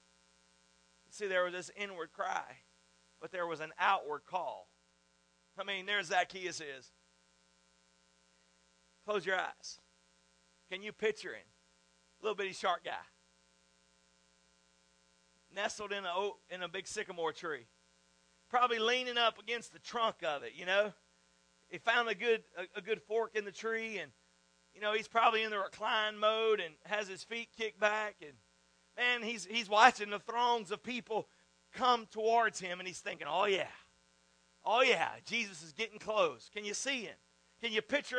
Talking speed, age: 160 wpm, 40-59